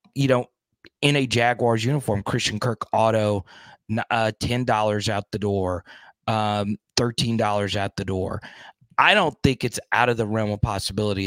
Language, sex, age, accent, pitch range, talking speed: English, male, 30-49, American, 105-125 Hz, 155 wpm